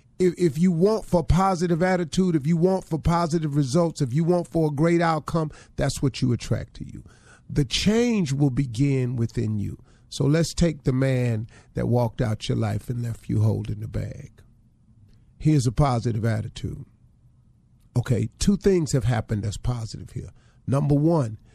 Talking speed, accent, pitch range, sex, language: 170 wpm, American, 115-150 Hz, male, English